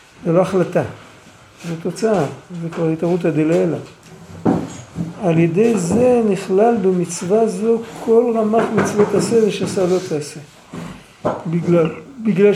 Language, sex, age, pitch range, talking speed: Hebrew, male, 50-69, 170-220 Hz, 120 wpm